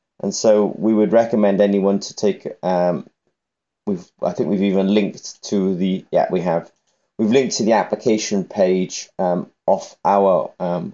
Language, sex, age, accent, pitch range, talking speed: English, male, 20-39, British, 95-110 Hz, 165 wpm